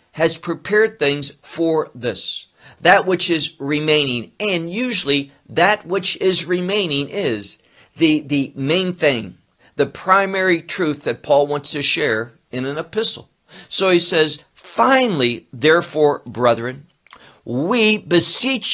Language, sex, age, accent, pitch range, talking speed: English, male, 60-79, American, 135-195 Hz, 125 wpm